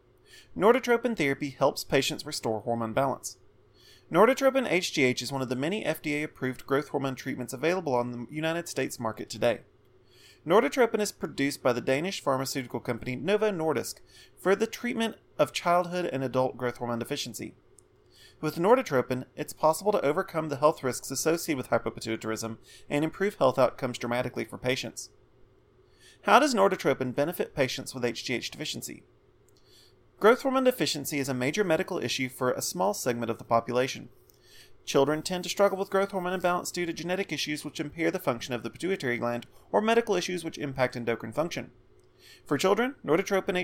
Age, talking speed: 30-49, 160 wpm